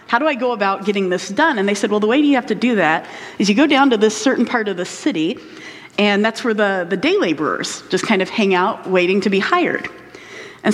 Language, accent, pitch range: English, American, 185-235 Hz